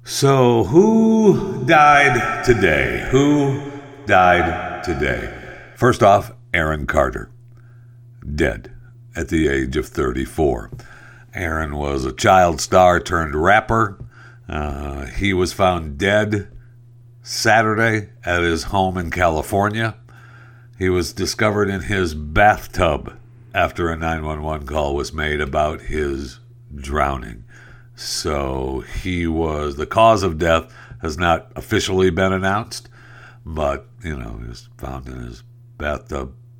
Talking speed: 115 wpm